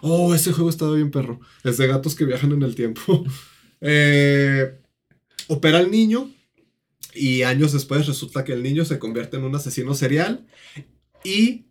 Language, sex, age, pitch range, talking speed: Spanish, male, 30-49, 125-165 Hz, 165 wpm